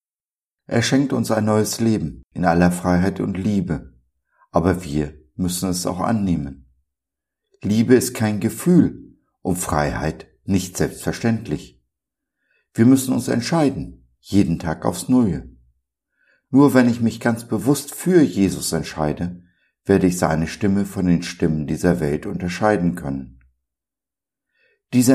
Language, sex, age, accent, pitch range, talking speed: German, male, 60-79, German, 75-100 Hz, 130 wpm